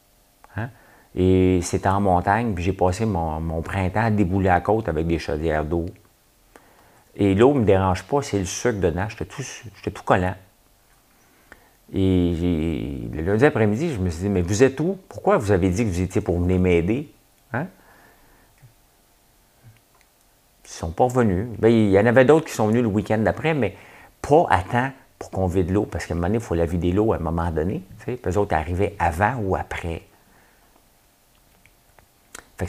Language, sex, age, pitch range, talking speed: French, male, 50-69, 90-110 Hz, 185 wpm